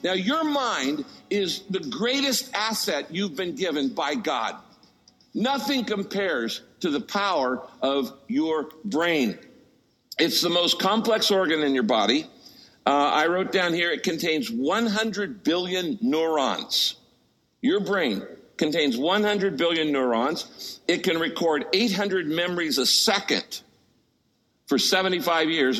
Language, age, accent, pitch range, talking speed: English, 60-79, American, 150-220 Hz, 125 wpm